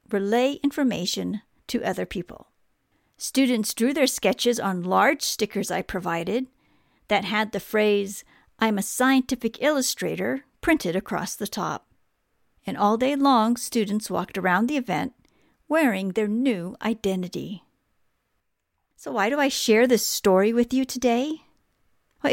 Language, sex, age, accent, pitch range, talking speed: English, female, 50-69, American, 205-265 Hz, 135 wpm